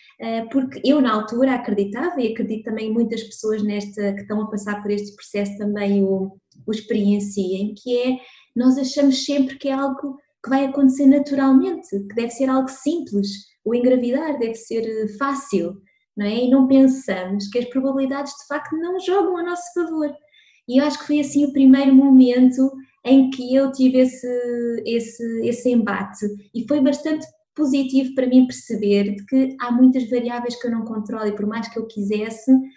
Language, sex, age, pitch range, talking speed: Portuguese, female, 20-39, 210-265 Hz, 175 wpm